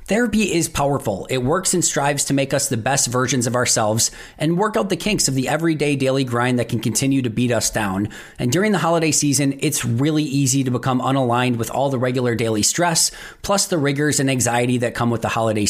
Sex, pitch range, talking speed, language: male, 125-160 Hz, 225 wpm, English